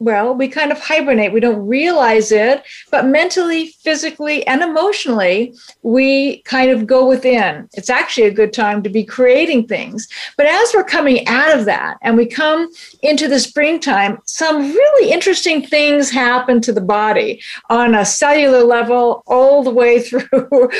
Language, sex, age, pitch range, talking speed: English, female, 50-69, 250-315 Hz, 165 wpm